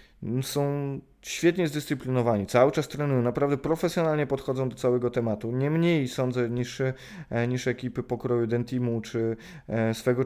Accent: native